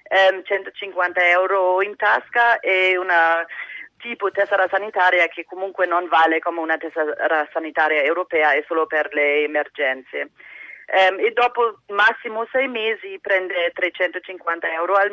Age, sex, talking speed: 30-49, female, 125 wpm